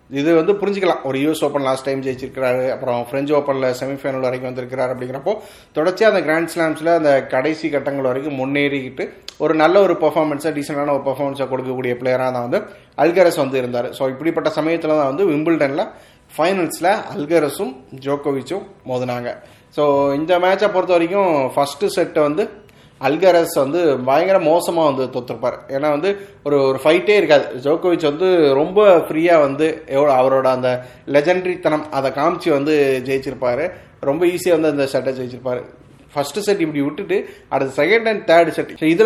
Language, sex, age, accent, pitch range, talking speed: Tamil, male, 30-49, native, 135-165 Hz, 150 wpm